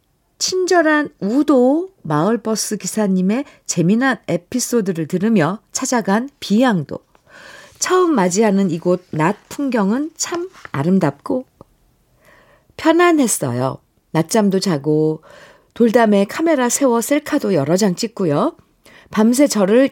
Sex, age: female, 50-69